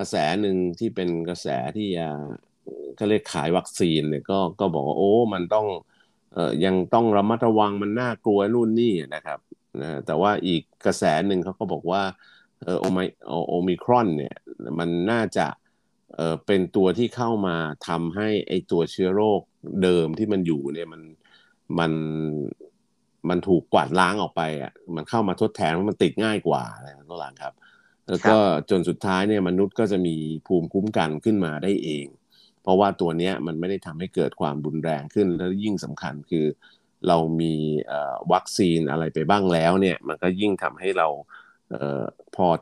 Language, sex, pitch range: Thai, male, 80-100 Hz